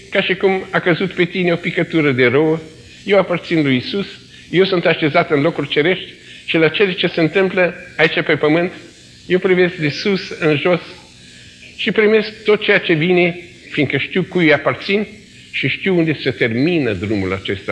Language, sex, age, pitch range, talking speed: Romanian, male, 50-69, 145-205 Hz, 185 wpm